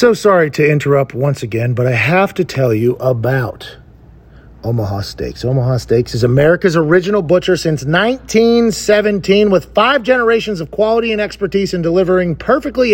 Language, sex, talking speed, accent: English, male, 155 wpm, American